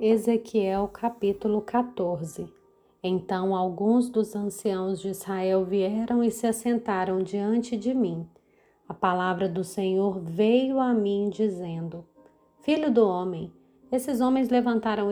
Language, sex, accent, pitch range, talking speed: Portuguese, female, Brazilian, 200-250 Hz, 120 wpm